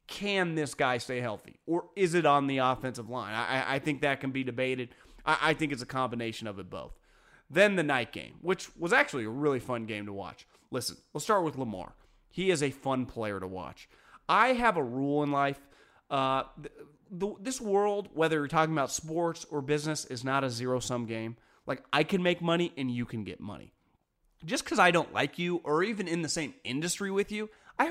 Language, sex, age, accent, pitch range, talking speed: English, male, 30-49, American, 135-195 Hz, 220 wpm